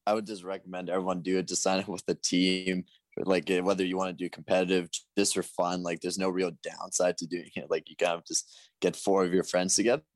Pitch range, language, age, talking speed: 90-95 Hz, English, 20-39, 250 wpm